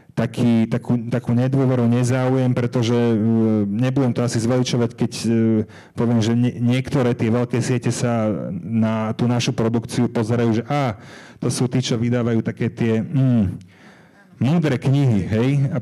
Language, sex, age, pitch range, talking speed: Slovak, male, 30-49, 110-130 Hz, 145 wpm